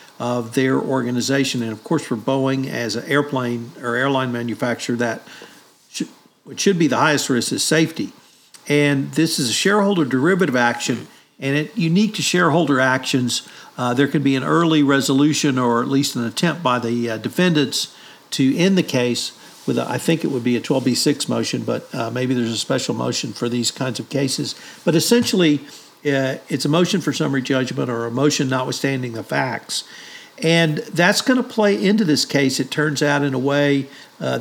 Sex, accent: male, American